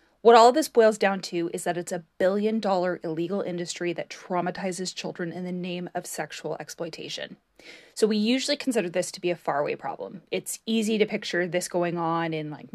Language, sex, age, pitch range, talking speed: English, female, 20-39, 170-215 Hz, 195 wpm